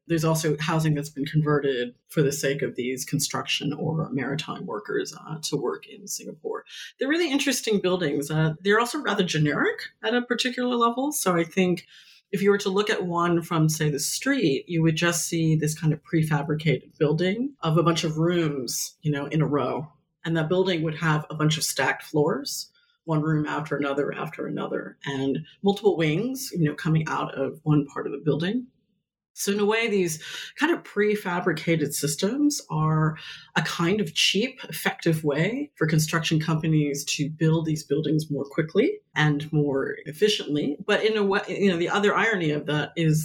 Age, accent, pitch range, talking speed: 30-49, American, 150-195 Hz, 185 wpm